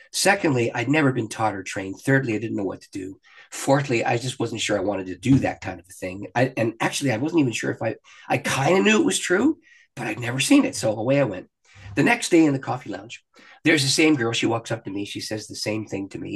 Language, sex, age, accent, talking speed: English, male, 50-69, American, 280 wpm